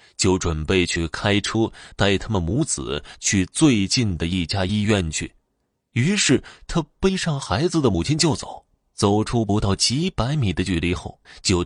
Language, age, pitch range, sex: Chinese, 20-39, 85-125 Hz, male